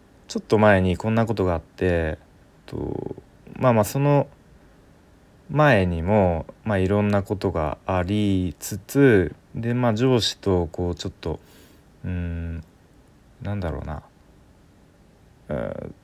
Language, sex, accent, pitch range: Japanese, male, native, 90-120 Hz